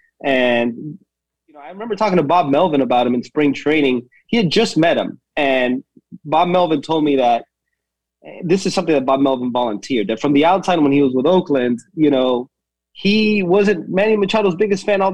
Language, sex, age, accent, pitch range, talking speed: English, male, 30-49, American, 135-185 Hz, 200 wpm